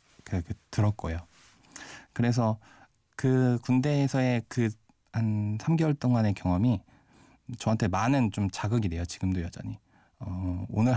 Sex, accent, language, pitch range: male, native, Korean, 95-120 Hz